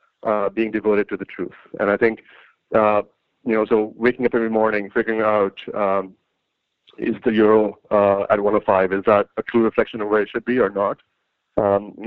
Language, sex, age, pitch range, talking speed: English, male, 40-59, 110-130 Hz, 195 wpm